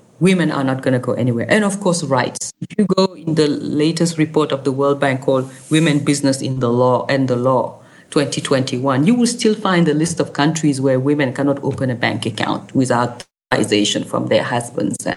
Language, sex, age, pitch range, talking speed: English, female, 40-59, 135-195 Hz, 205 wpm